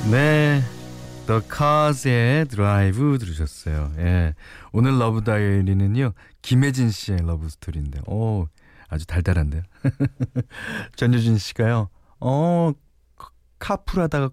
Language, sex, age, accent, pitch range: Korean, male, 40-59, native, 90-150 Hz